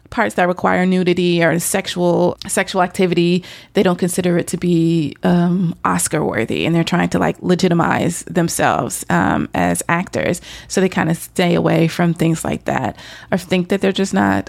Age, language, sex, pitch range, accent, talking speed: 30-49, English, female, 170-200 Hz, American, 180 wpm